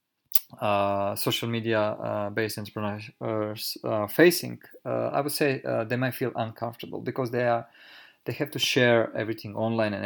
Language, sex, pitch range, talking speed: English, male, 105-120 Hz, 155 wpm